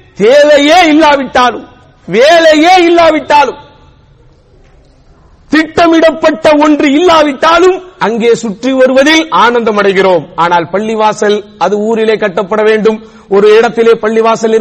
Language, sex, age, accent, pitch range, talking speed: English, male, 50-69, Indian, 205-300 Hz, 85 wpm